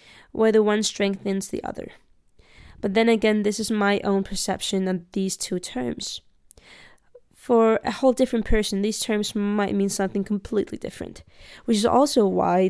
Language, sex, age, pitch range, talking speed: English, female, 20-39, 195-225 Hz, 160 wpm